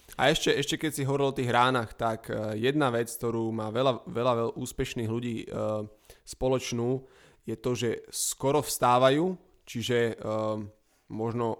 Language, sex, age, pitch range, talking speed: Slovak, male, 20-39, 115-135 Hz, 150 wpm